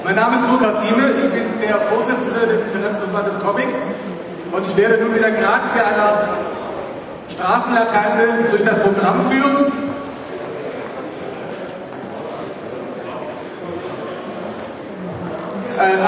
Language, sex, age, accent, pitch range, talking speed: German, male, 40-59, German, 190-220 Hz, 95 wpm